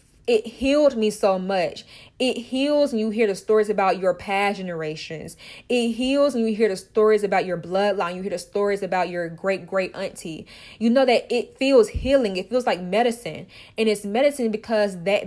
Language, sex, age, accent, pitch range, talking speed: English, female, 10-29, American, 195-240 Hz, 195 wpm